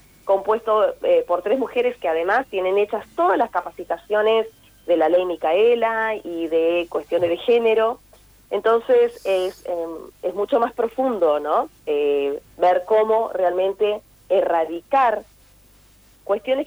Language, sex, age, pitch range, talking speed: Spanish, female, 30-49, 170-240 Hz, 125 wpm